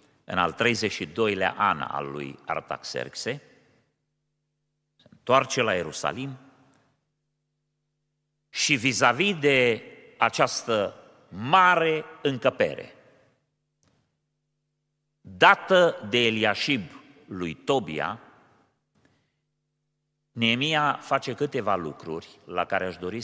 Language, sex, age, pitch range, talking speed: Romanian, male, 40-59, 115-150 Hz, 75 wpm